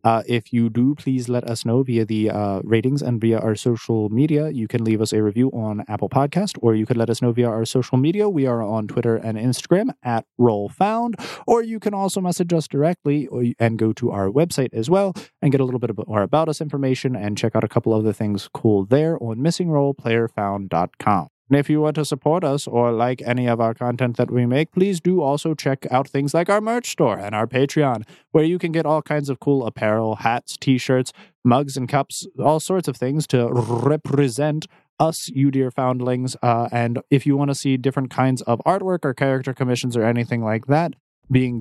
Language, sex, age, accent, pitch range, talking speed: English, male, 20-39, American, 120-150 Hz, 215 wpm